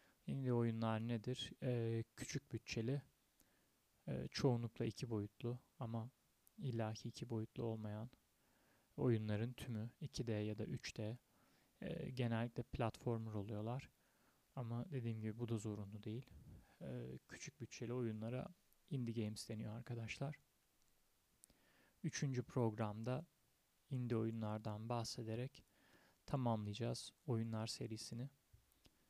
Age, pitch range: 30-49, 110-130 Hz